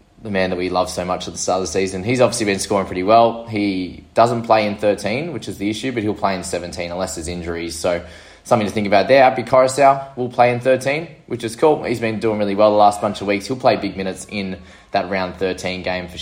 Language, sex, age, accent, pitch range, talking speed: English, male, 20-39, Australian, 95-125 Hz, 265 wpm